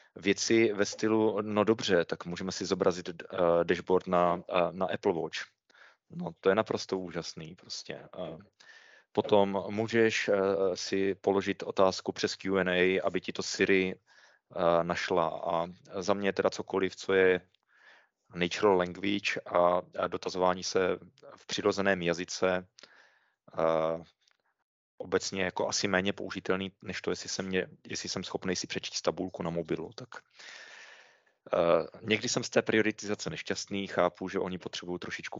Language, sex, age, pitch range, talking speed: Czech, male, 30-49, 85-100 Hz, 145 wpm